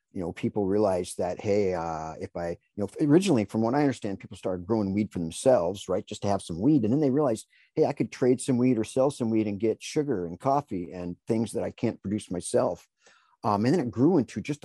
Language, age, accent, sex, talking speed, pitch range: English, 50-69, American, male, 250 wpm, 95-125 Hz